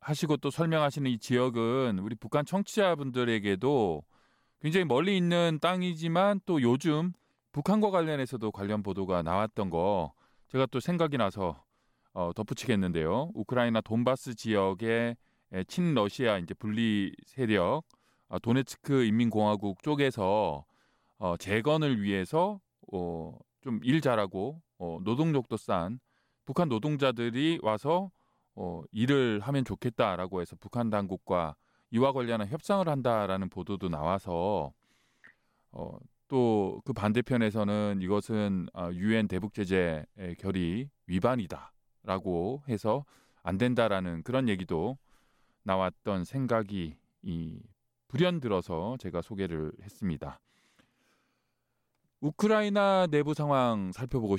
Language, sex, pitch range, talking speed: English, male, 95-140 Hz, 95 wpm